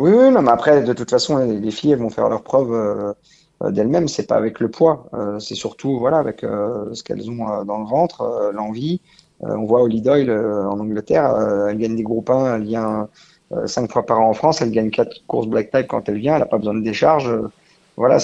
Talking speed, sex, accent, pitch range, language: 255 wpm, male, French, 110-140 Hz, French